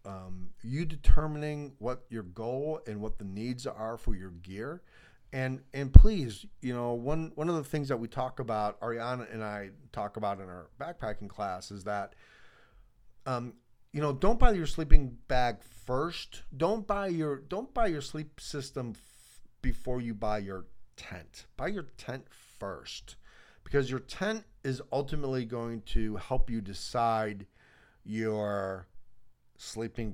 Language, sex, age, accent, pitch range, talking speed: English, male, 50-69, American, 100-125 Hz, 150 wpm